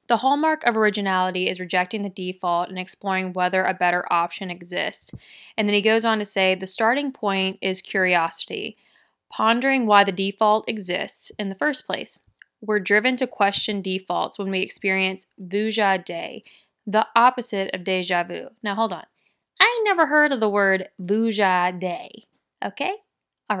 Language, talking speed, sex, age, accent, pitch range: English, 165 wpm, female, 20-39, American, 190-225 Hz